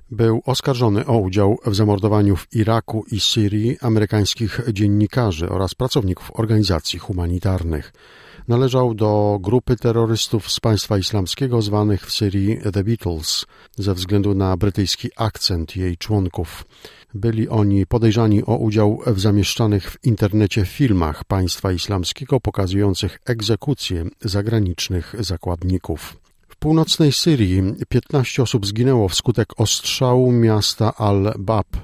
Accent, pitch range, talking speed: native, 95-115 Hz, 115 wpm